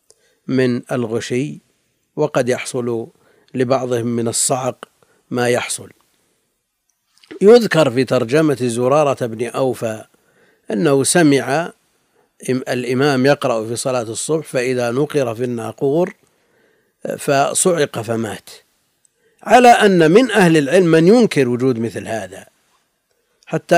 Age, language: 50-69, Arabic